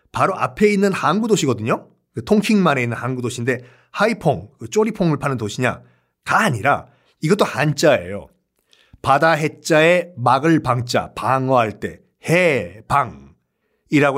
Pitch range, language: 125-180 Hz, Korean